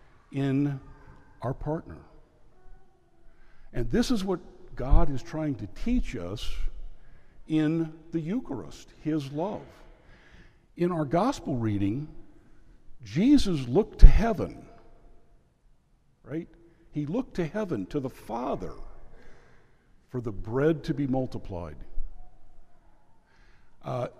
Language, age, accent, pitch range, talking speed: English, 60-79, American, 110-150 Hz, 100 wpm